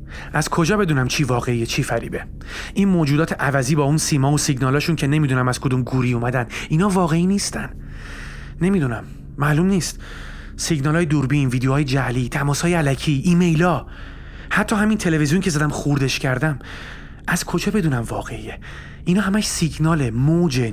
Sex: male